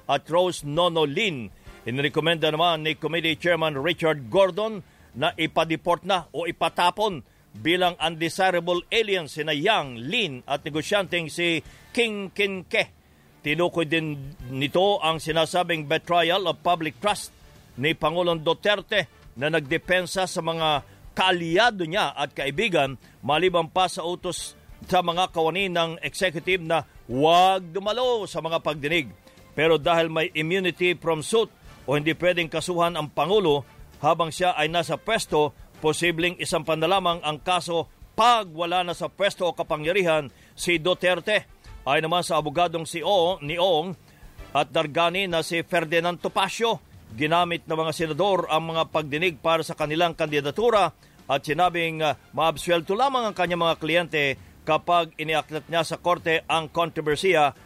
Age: 50-69